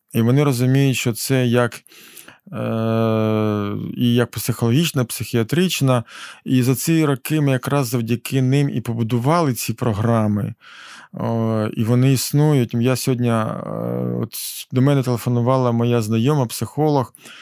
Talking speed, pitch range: 125 wpm, 120-150 Hz